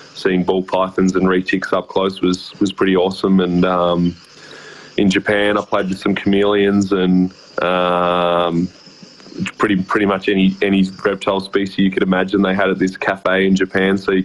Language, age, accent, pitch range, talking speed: English, 20-39, Australian, 90-95 Hz, 175 wpm